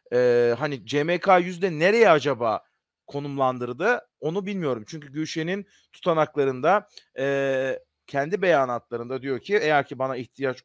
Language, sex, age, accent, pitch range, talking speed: Turkish, male, 40-59, native, 130-195 Hz, 120 wpm